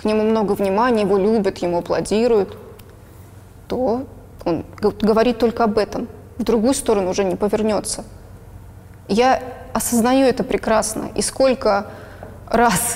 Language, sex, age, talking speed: Russian, female, 20-39, 125 wpm